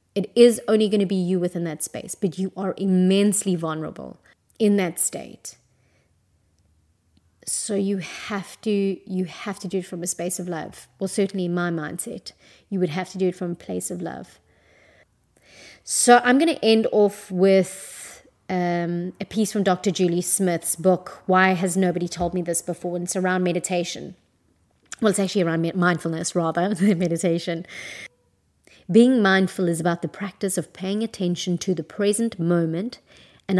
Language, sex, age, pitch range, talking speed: English, female, 30-49, 170-195 Hz, 170 wpm